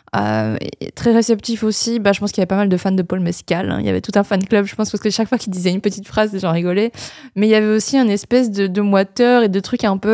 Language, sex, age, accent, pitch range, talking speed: French, female, 20-39, French, 190-225 Hz, 325 wpm